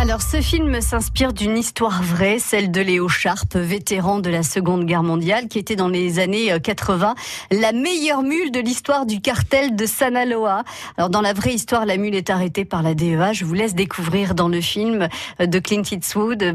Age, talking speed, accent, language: 40-59, 195 wpm, French, French